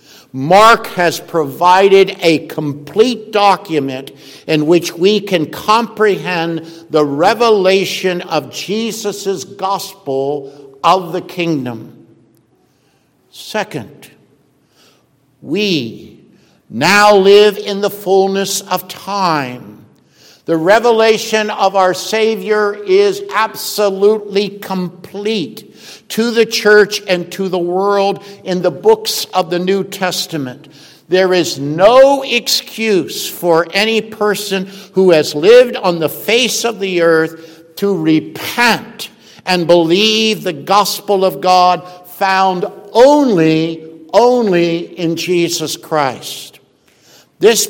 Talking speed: 100 wpm